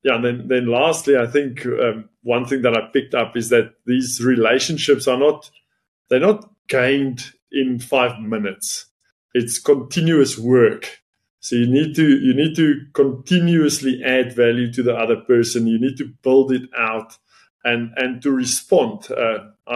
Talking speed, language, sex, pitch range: 160 wpm, English, male, 120-145 Hz